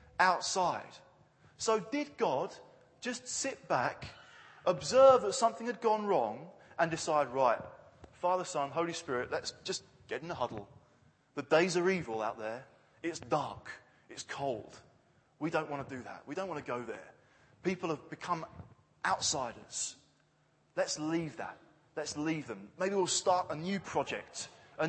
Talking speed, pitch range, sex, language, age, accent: 155 wpm, 150-210 Hz, male, English, 20-39, British